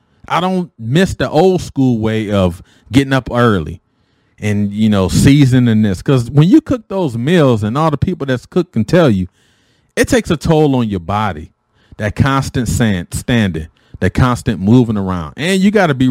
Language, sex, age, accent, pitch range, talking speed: English, male, 40-59, American, 105-150 Hz, 185 wpm